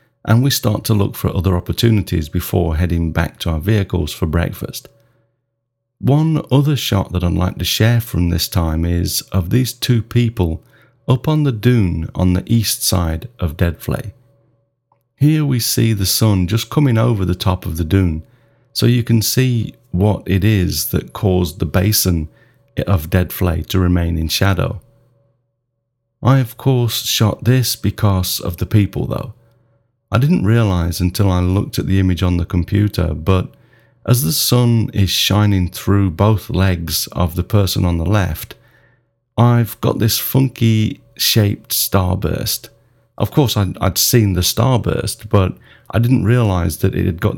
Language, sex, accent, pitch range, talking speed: English, male, British, 90-120 Hz, 165 wpm